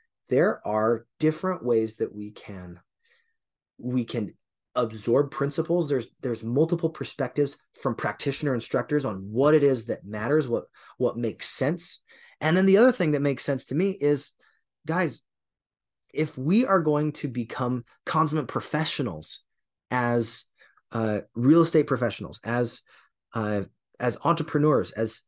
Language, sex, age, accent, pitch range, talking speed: English, male, 30-49, American, 120-160 Hz, 140 wpm